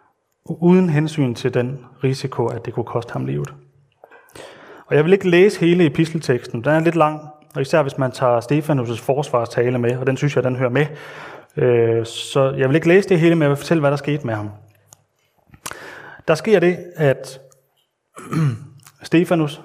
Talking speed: 180 wpm